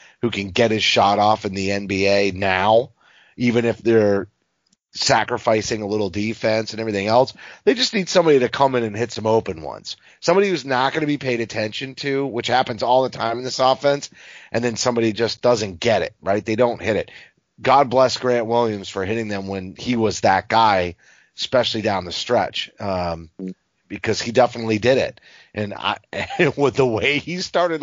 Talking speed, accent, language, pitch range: 195 wpm, American, English, 105-135 Hz